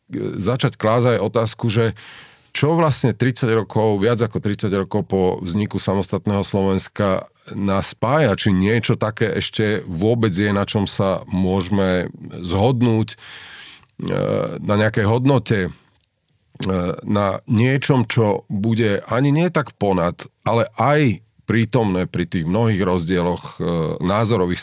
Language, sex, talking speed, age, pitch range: Slovak, male, 115 wpm, 40-59, 95-115 Hz